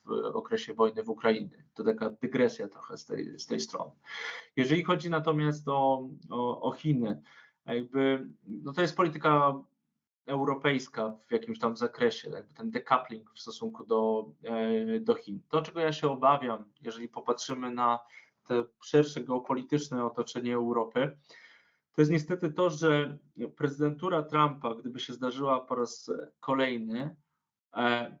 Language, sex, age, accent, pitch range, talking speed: Polish, male, 20-39, native, 120-150 Hz, 140 wpm